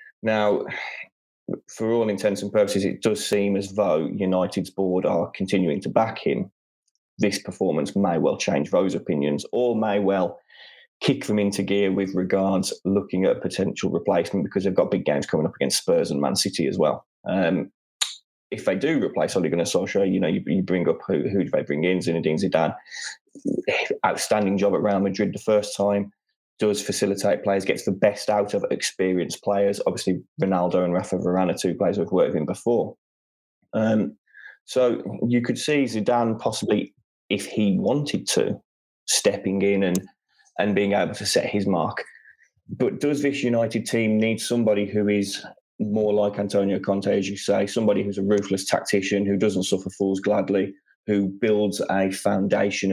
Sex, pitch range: male, 95-110 Hz